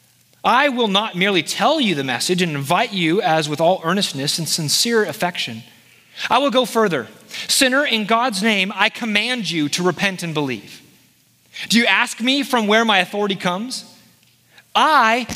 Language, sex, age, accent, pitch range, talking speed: English, male, 30-49, American, 180-255 Hz, 170 wpm